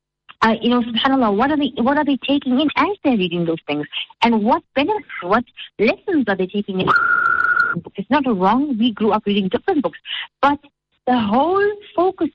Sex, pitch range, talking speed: female, 200-285 Hz, 190 wpm